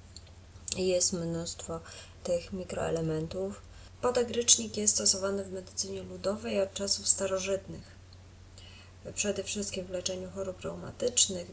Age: 20-39